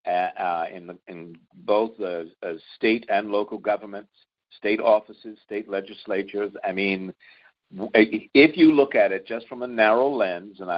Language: English